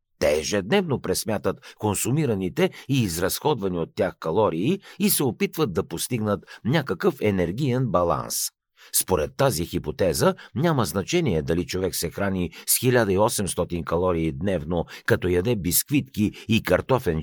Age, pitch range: 50-69, 90-140 Hz